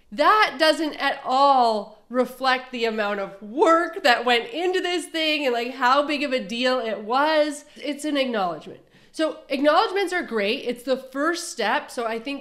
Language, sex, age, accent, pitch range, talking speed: English, female, 30-49, American, 235-310 Hz, 180 wpm